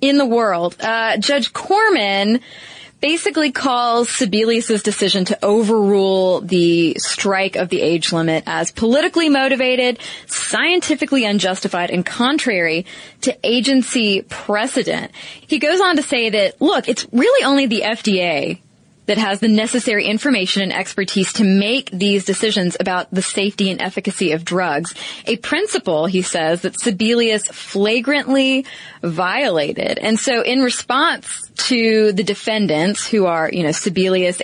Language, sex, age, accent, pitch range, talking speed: English, female, 20-39, American, 185-255 Hz, 135 wpm